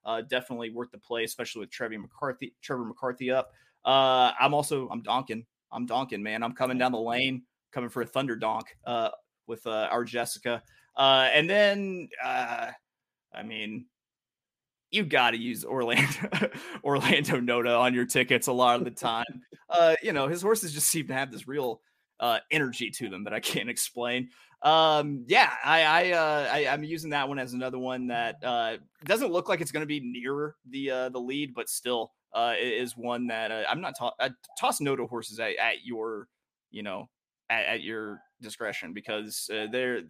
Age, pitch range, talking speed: 30-49, 120-150 Hz, 195 wpm